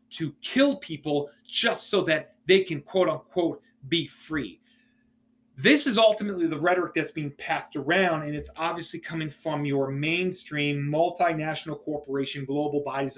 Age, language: 30-49, English